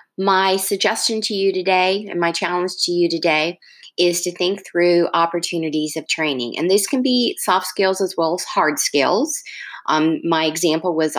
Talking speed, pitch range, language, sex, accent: 175 wpm, 155-185 Hz, English, female, American